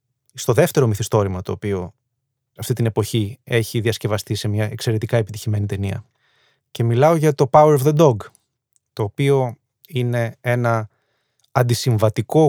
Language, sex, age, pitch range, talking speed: Greek, male, 20-39, 115-135 Hz, 135 wpm